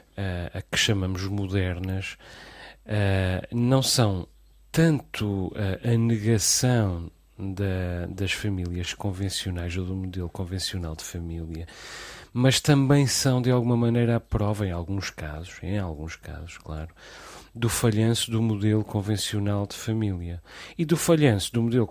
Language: Portuguese